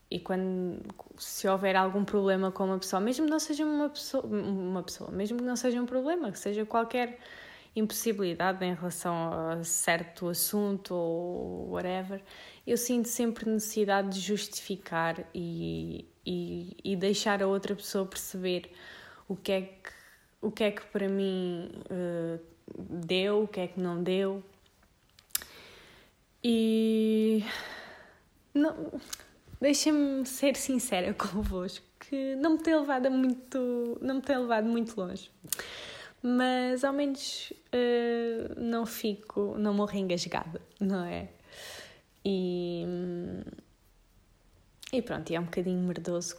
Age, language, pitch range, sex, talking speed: 20-39, Portuguese, 175-225 Hz, female, 130 wpm